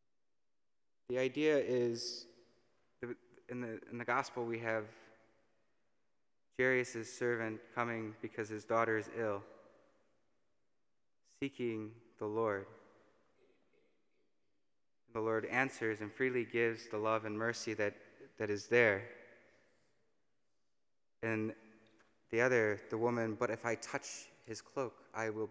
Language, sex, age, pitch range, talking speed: English, male, 20-39, 110-130 Hz, 115 wpm